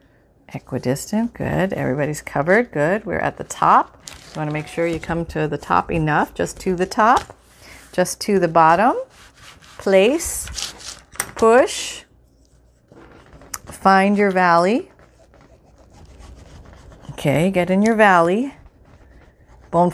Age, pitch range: 40-59, 140-185 Hz